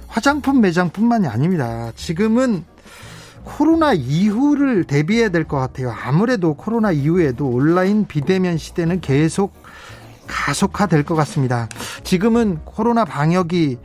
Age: 40-59